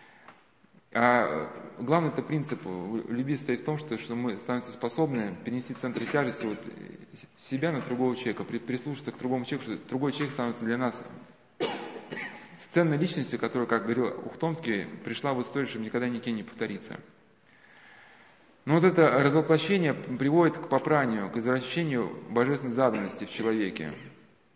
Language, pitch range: Russian, 120-155 Hz